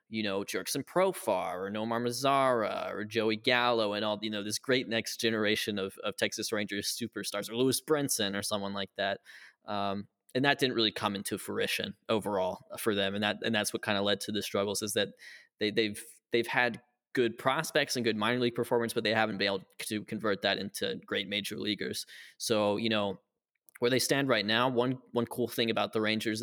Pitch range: 105-115 Hz